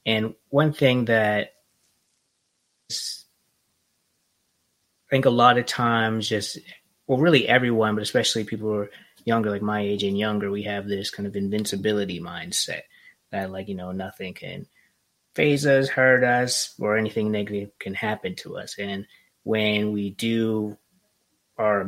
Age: 20-39